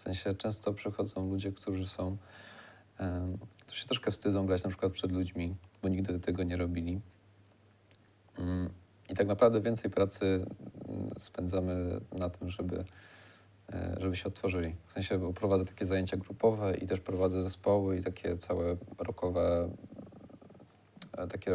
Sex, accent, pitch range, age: male, native, 90-105 Hz, 40-59